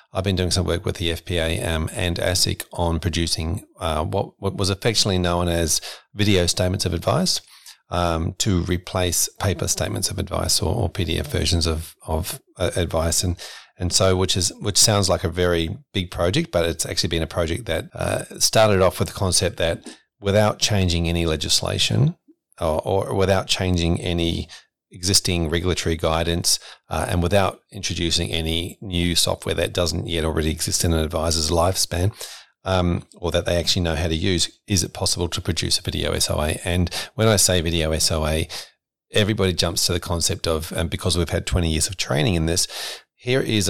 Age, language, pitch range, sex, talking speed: 40-59, English, 85-100 Hz, male, 185 wpm